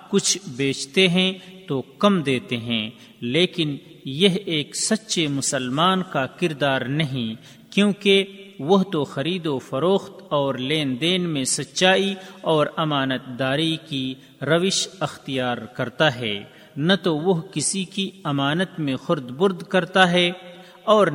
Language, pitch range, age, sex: Urdu, 140-185 Hz, 40-59, male